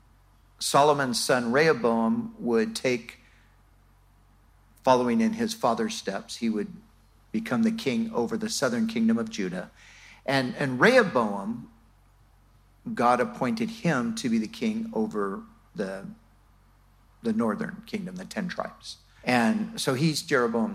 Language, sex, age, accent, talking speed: English, male, 50-69, American, 125 wpm